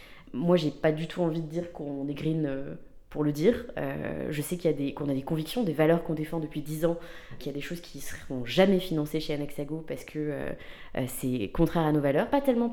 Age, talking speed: 20-39, 255 wpm